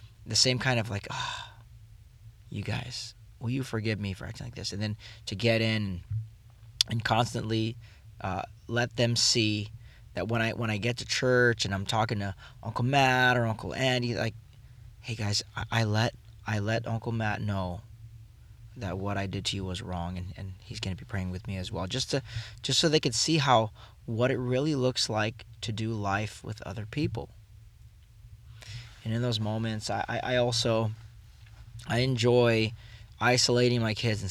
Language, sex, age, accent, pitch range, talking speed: English, male, 20-39, American, 105-120 Hz, 185 wpm